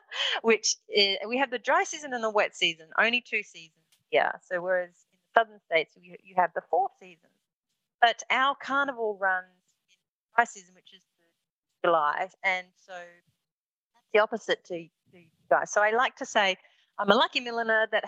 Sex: female